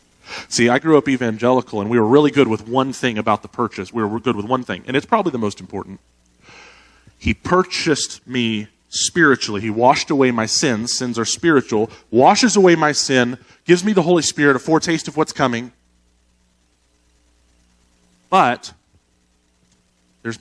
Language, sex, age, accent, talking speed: English, male, 30-49, American, 165 wpm